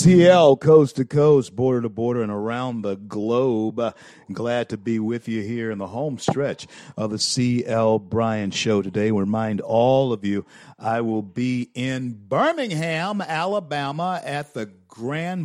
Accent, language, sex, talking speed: American, English, male, 145 wpm